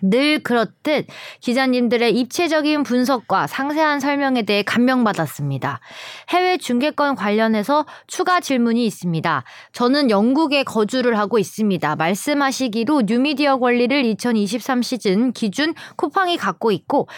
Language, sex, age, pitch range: Korean, female, 20-39, 220-295 Hz